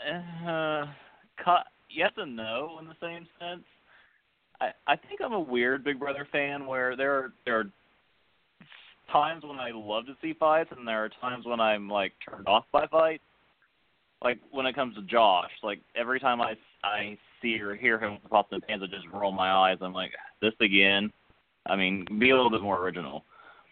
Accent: American